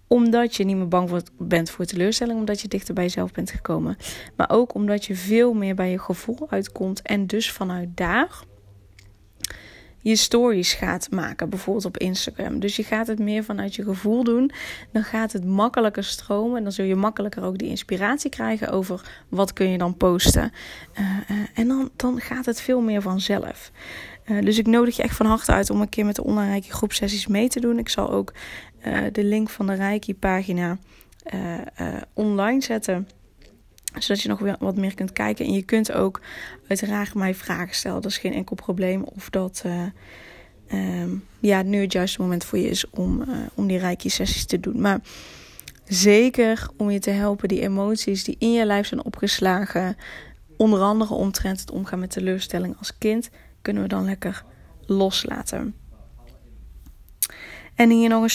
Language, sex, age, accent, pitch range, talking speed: Dutch, female, 20-39, Dutch, 185-220 Hz, 185 wpm